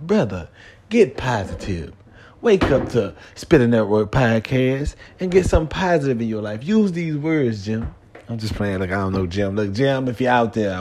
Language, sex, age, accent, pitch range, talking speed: English, male, 30-49, American, 100-130 Hz, 190 wpm